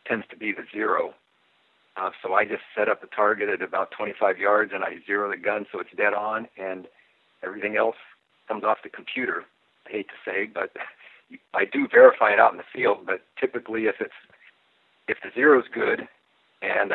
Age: 60-79